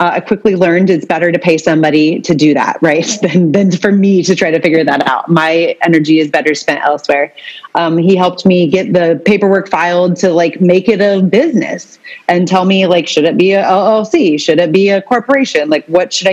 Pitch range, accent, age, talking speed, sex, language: 170-220 Hz, American, 30-49, 220 wpm, female, English